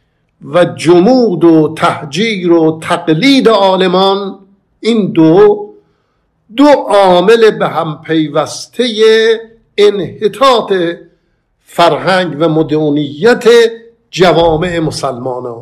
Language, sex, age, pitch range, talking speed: Persian, male, 50-69, 160-215 Hz, 75 wpm